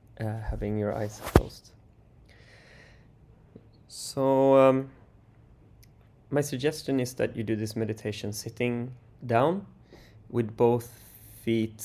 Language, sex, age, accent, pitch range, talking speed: English, male, 20-39, Swedish, 110-125 Hz, 100 wpm